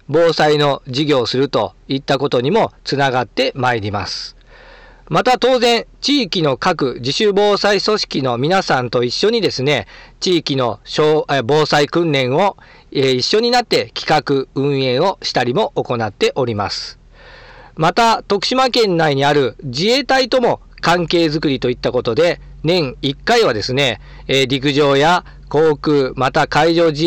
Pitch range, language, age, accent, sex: 135-185 Hz, Japanese, 40-59, native, male